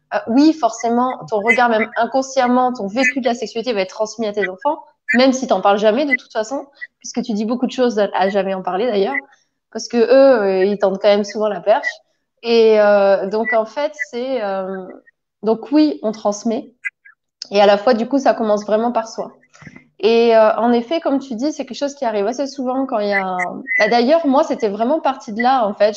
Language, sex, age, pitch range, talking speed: French, female, 20-39, 215-280 Hz, 225 wpm